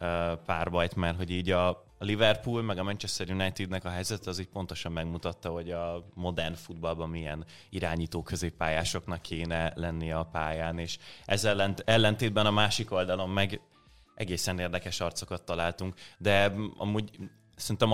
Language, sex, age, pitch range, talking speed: Hungarian, male, 20-39, 85-100 Hz, 140 wpm